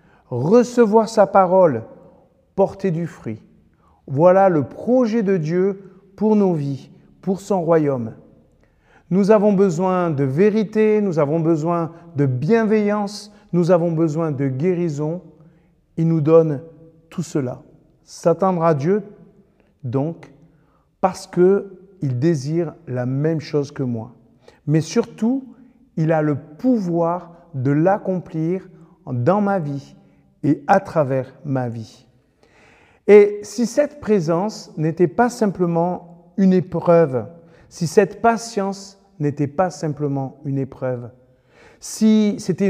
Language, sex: French, male